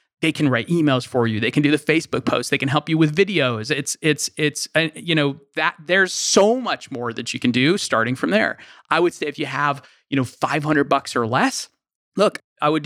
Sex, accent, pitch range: male, American, 130-160 Hz